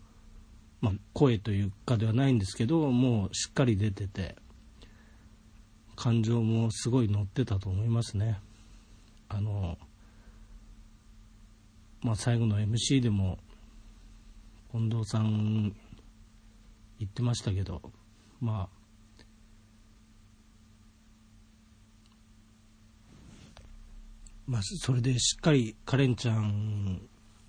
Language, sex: Japanese, male